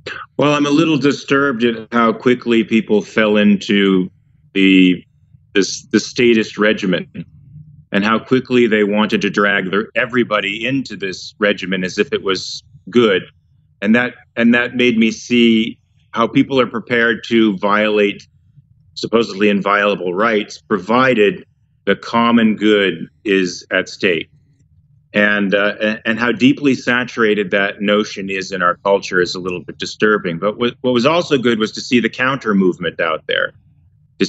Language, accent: English, American